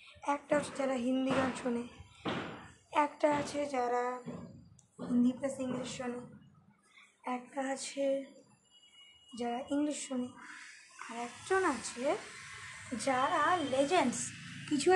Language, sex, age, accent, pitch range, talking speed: Bengali, female, 20-39, native, 250-295 Hz, 60 wpm